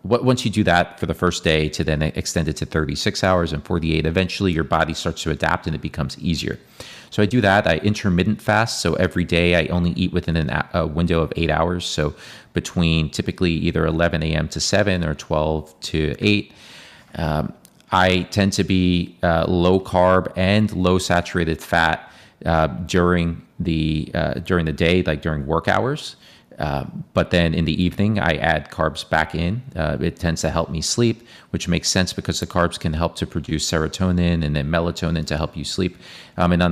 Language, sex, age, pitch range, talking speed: English, male, 30-49, 80-90 Hz, 195 wpm